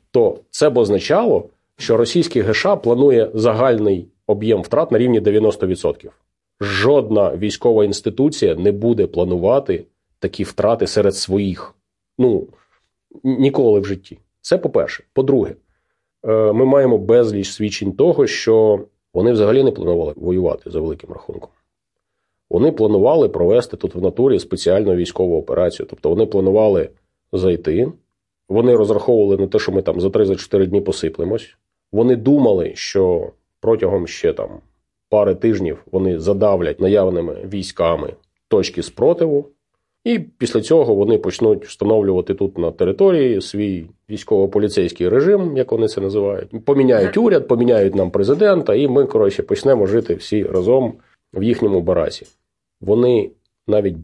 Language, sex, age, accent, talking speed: Ukrainian, male, 30-49, native, 130 wpm